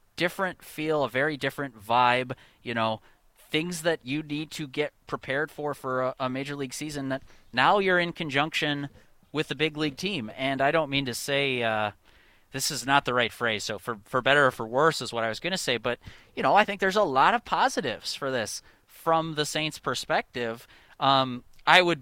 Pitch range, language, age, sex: 120-160 Hz, English, 30-49, male